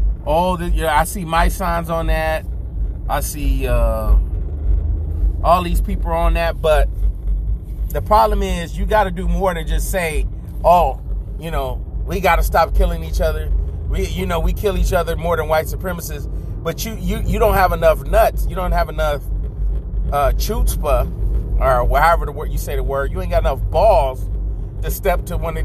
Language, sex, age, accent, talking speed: English, male, 30-49, American, 190 wpm